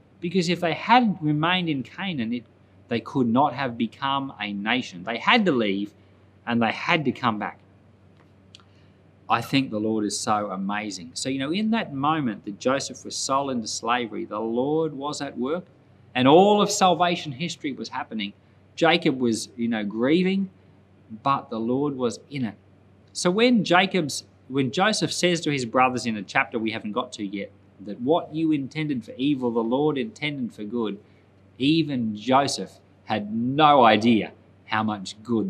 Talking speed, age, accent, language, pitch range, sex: 175 wpm, 30-49, Australian, English, 100-155 Hz, male